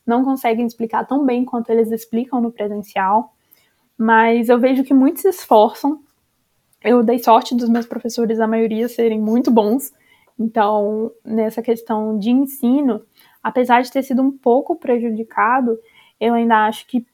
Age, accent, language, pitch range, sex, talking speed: 20-39, Brazilian, Portuguese, 225-270 Hz, female, 155 wpm